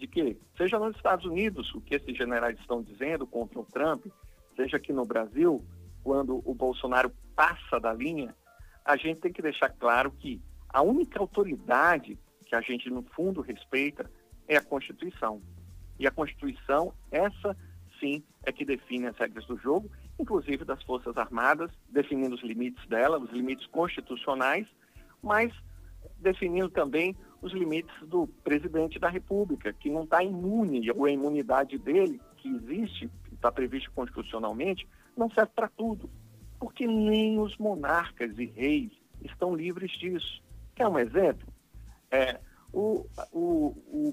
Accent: Brazilian